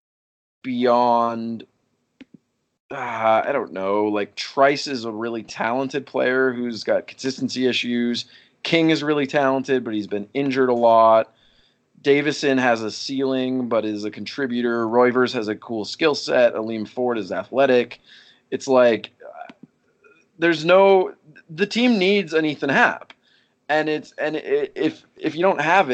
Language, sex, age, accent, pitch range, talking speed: English, male, 20-39, American, 110-135 Hz, 150 wpm